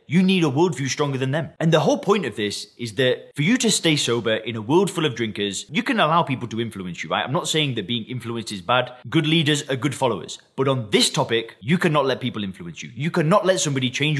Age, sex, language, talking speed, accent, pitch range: 20-39, male, English, 260 wpm, British, 120-160 Hz